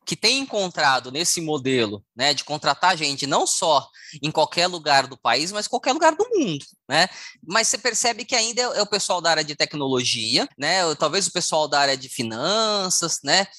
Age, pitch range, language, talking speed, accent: 20-39, 150-220 Hz, Portuguese, 195 wpm, Brazilian